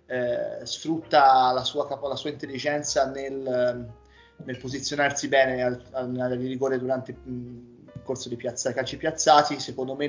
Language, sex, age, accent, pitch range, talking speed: Italian, male, 30-49, native, 120-140 Hz, 120 wpm